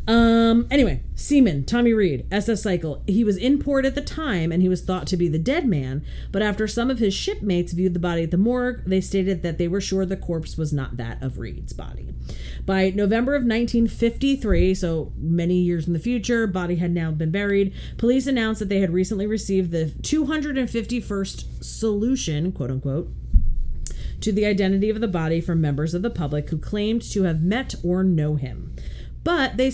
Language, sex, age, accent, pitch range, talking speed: English, female, 40-59, American, 155-220 Hz, 195 wpm